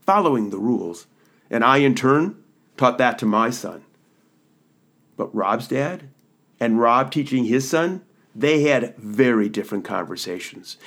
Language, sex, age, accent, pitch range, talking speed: English, male, 50-69, American, 110-160 Hz, 140 wpm